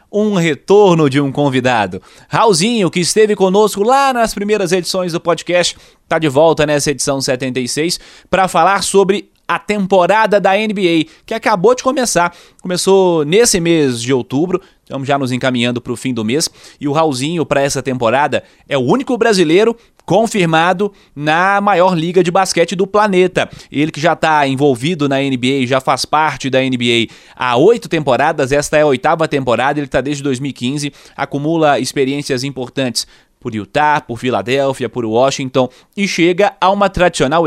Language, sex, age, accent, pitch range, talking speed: Portuguese, male, 20-39, Brazilian, 130-175 Hz, 165 wpm